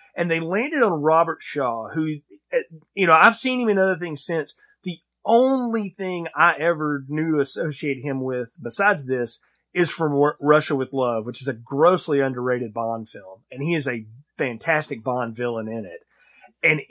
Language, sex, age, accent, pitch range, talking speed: English, male, 30-49, American, 135-190 Hz, 175 wpm